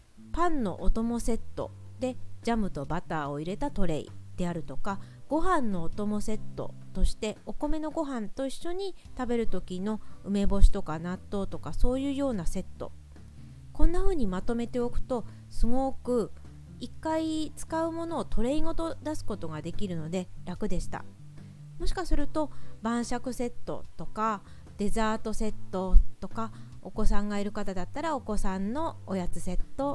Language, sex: Japanese, female